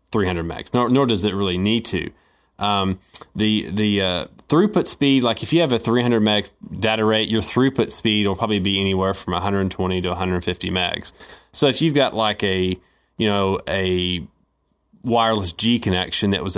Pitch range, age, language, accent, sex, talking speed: 95-120 Hz, 20-39, English, American, male, 180 wpm